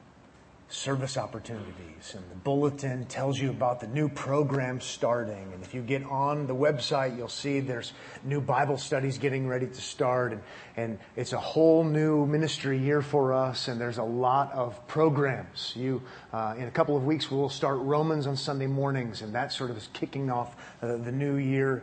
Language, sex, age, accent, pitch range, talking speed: English, male, 30-49, American, 125-150 Hz, 190 wpm